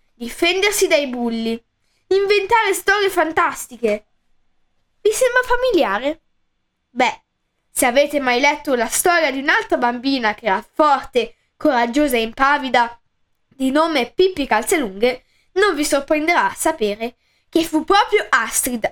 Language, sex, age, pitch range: Italian, female, 10-29, 240-335 Hz